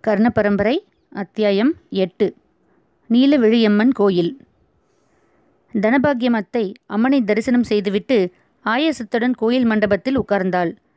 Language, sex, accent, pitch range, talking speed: Tamil, female, native, 210-245 Hz, 75 wpm